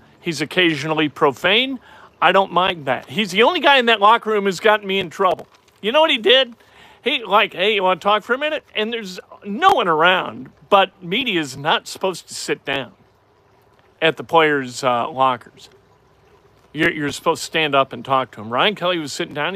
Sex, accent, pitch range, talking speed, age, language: male, American, 150-220 Hz, 210 wpm, 50-69, English